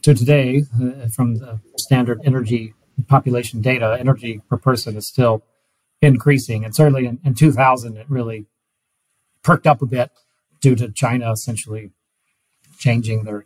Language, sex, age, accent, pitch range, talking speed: English, male, 40-59, American, 115-135 Hz, 145 wpm